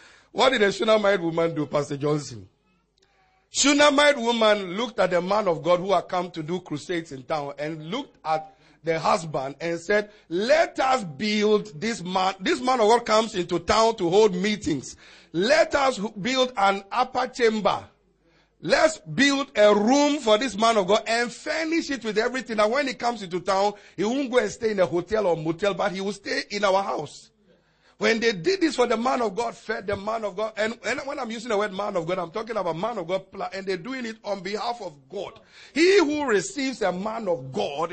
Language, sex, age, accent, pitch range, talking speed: English, male, 50-69, Nigerian, 185-255 Hz, 210 wpm